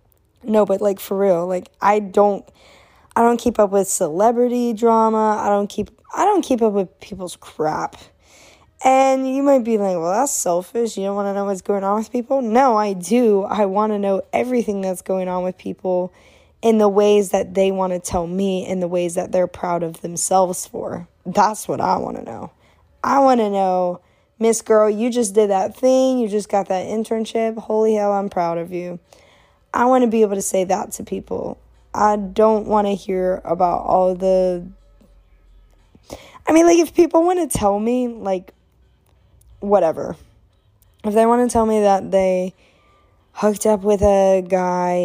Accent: American